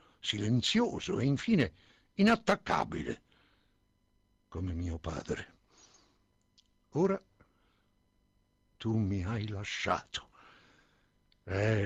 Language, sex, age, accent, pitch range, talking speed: Italian, male, 60-79, native, 105-160 Hz, 70 wpm